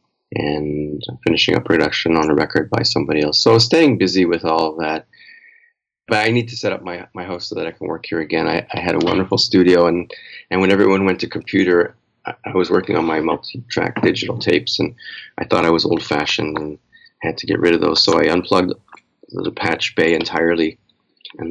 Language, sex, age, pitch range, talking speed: English, male, 30-49, 85-110 Hz, 220 wpm